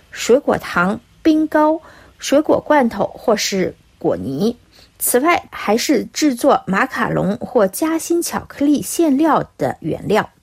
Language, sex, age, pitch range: Chinese, female, 50-69, 230-305 Hz